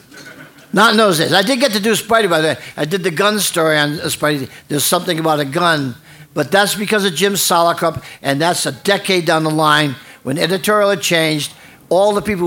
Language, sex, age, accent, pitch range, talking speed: English, male, 50-69, American, 150-180 Hz, 220 wpm